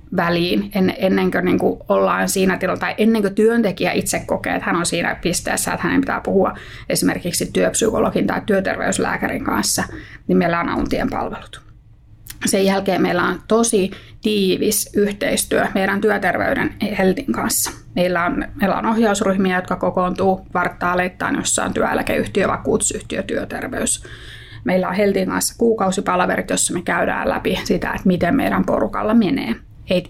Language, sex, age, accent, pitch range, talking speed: English, female, 20-39, Finnish, 180-205 Hz, 140 wpm